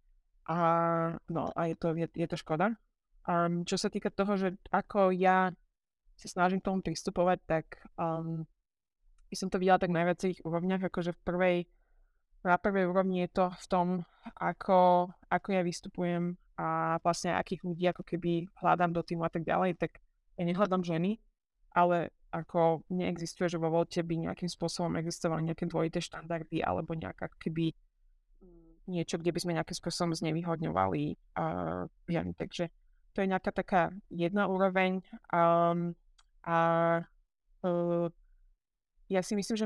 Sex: female